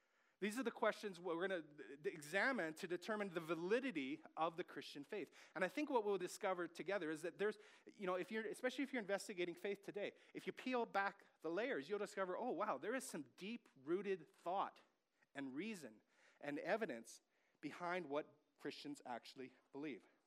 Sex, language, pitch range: male, English, 160-225 Hz